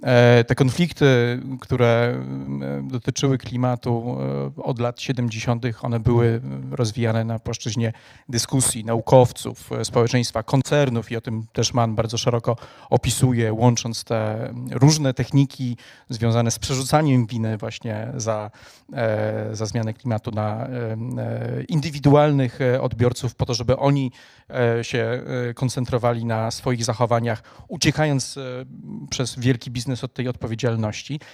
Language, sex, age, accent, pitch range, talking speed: Polish, male, 40-59, native, 115-130 Hz, 110 wpm